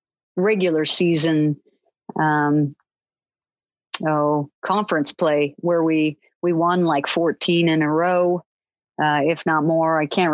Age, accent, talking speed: 50-69, American, 120 wpm